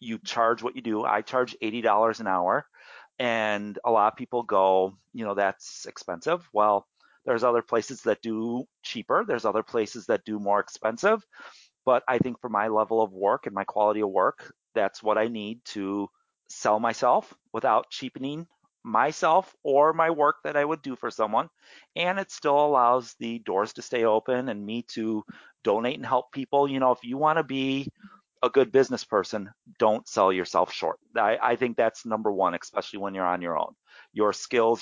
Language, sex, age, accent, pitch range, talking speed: English, male, 30-49, American, 110-145 Hz, 190 wpm